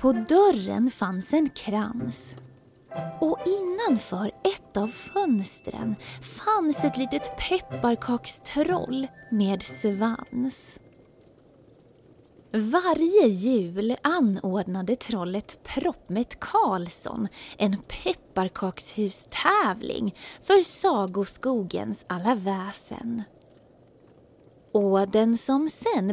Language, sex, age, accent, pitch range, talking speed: Swedish, female, 20-39, native, 195-265 Hz, 75 wpm